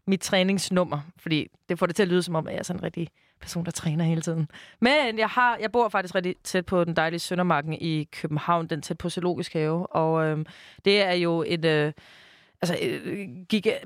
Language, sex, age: Danish, female, 30-49